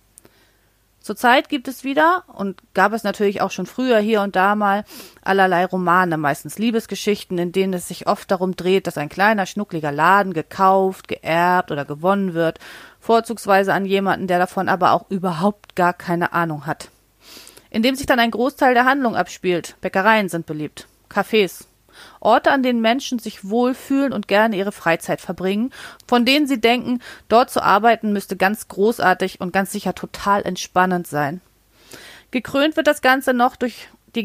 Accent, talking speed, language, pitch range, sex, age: German, 165 wpm, German, 170-215 Hz, female, 30-49